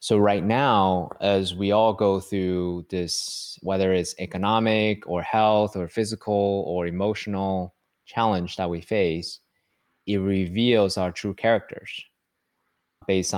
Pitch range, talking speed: 85-100 Hz, 125 wpm